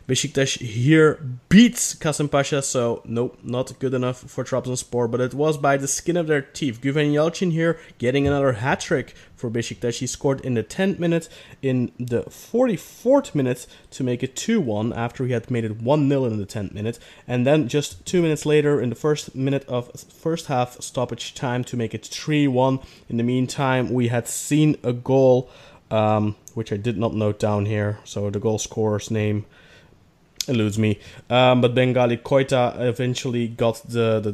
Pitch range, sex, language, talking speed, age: 115-140 Hz, male, English, 180 wpm, 20-39